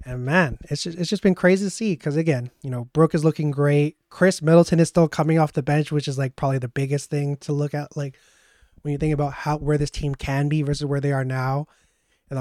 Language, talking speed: English, 255 wpm